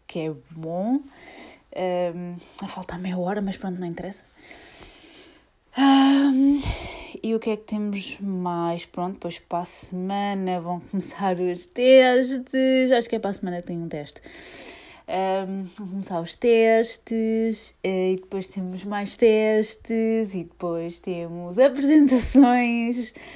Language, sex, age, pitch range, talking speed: Portuguese, female, 20-39, 175-240 Hz, 140 wpm